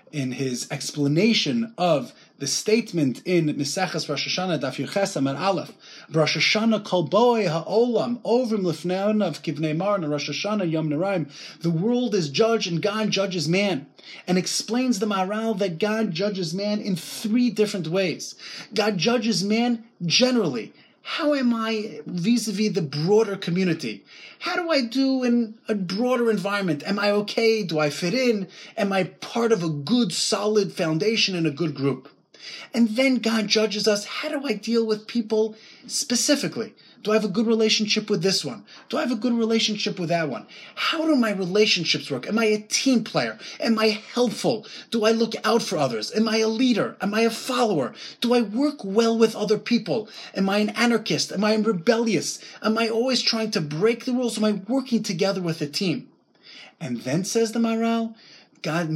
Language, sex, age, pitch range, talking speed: English, male, 30-49, 170-230 Hz, 180 wpm